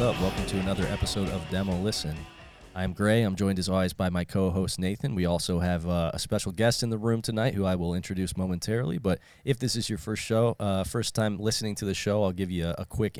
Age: 20-39